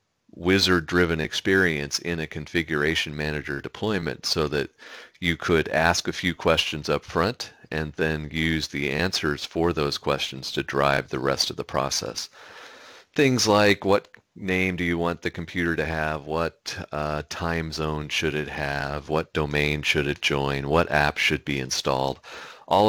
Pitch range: 70-85 Hz